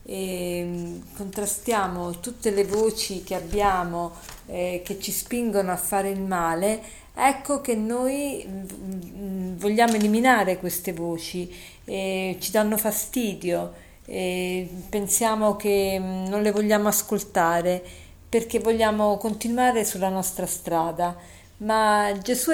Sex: female